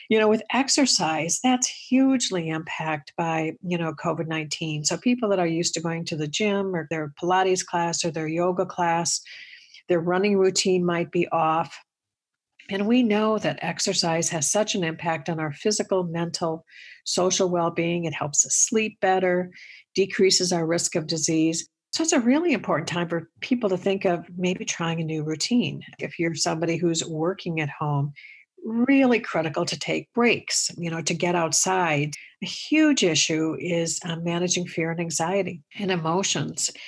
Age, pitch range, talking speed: 50-69, 165-195 Hz, 170 wpm